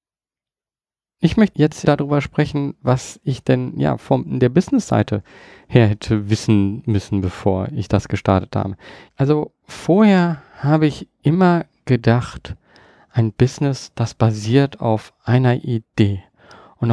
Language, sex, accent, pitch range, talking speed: German, male, German, 115-155 Hz, 125 wpm